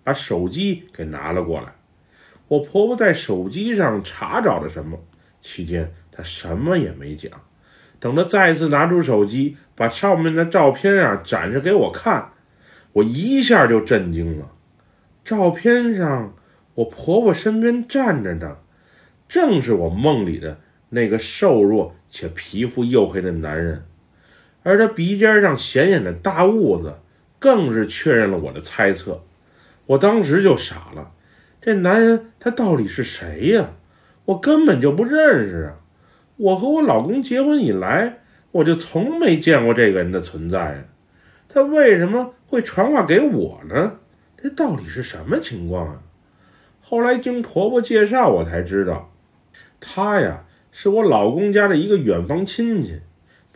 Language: Chinese